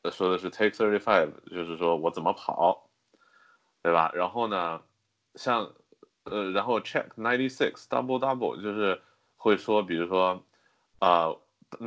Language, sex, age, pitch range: Chinese, male, 20-39, 90-115 Hz